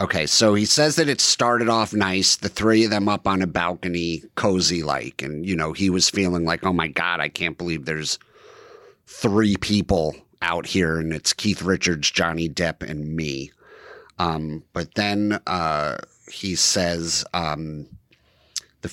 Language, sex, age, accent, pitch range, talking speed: English, male, 50-69, American, 85-105 Hz, 170 wpm